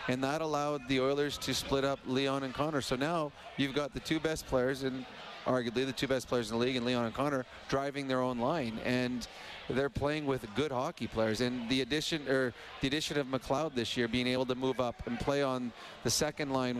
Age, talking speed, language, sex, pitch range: 40-59, 230 wpm, English, male, 125-145 Hz